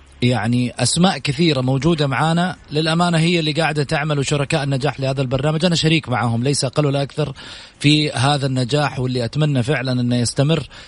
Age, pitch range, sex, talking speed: 30-49, 125-150 Hz, male, 160 wpm